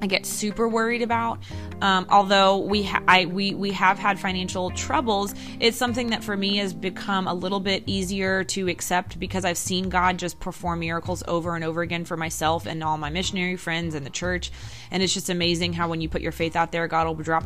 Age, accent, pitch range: 20-39, American, 165-195 Hz